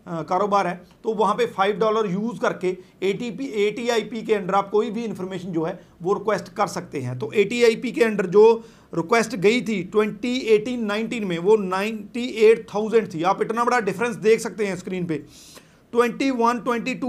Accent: native